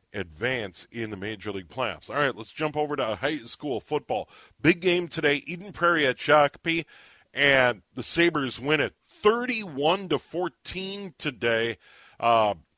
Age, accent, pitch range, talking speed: 40-59, American, 120-160 Hz, 150 wpm